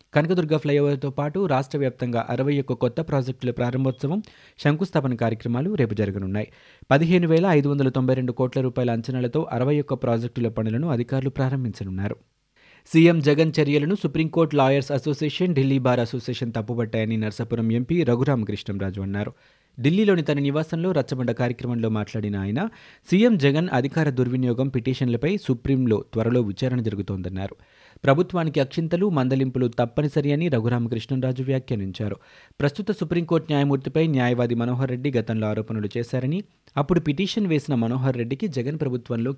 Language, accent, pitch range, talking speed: Telugu, native, 120-150 Hz, 115 wpm